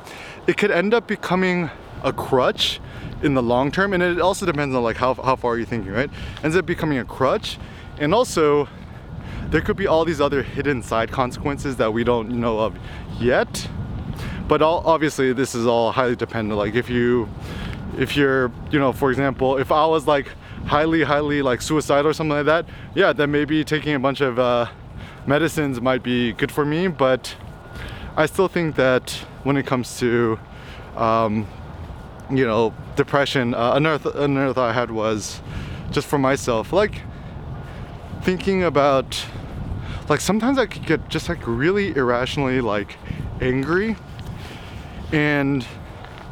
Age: 20-39